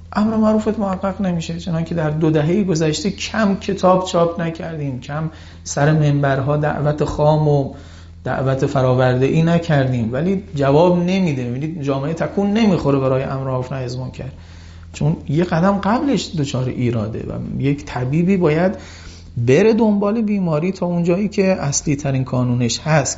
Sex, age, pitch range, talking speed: male, 40-59, 125-185 Hz, 140 wpm